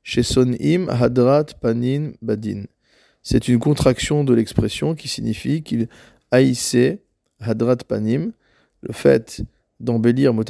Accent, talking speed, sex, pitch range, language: French, 105 wpm, male, 110-130 Hz, French